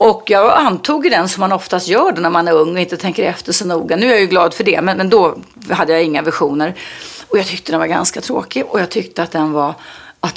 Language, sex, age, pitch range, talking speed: English, female, 40-59, 165-225 Hz, 260 wpm